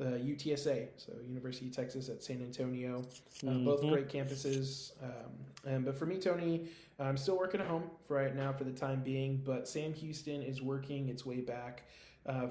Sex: male